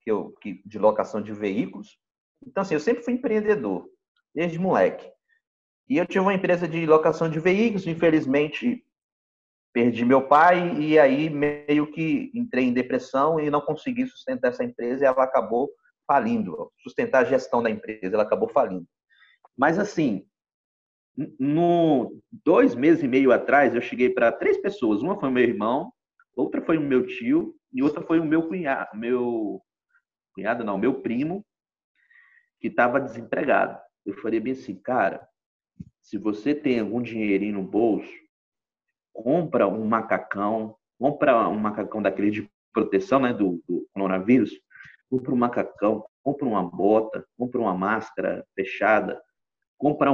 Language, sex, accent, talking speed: Portuguese, male, Brazilian, 150 wpm